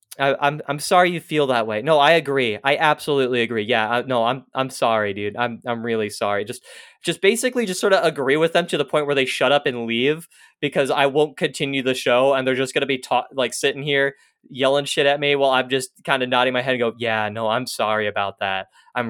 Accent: American